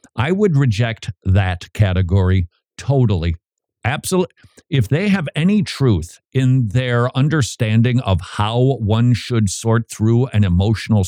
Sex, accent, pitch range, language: male, American, 110-150 Hz, English